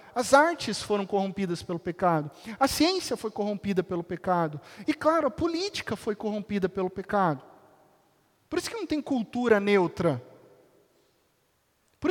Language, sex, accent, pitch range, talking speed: Portuguese, male, Brazilian, 165-250 Hz, 140 wpm